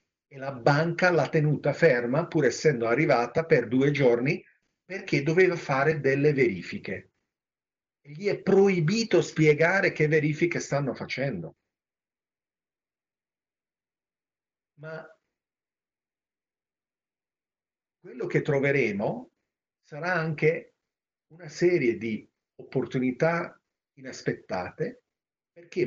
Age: 40-59